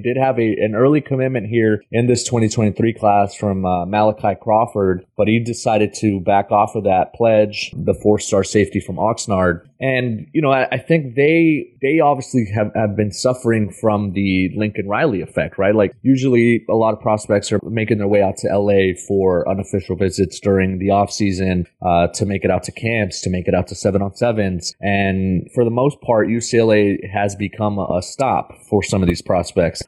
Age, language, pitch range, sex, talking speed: 30-49, English, 100-120 Hz, male, 195 wpm